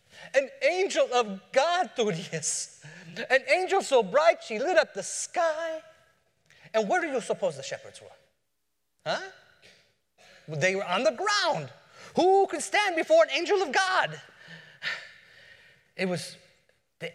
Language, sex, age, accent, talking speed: English, male, 30-49, American, 140 wpm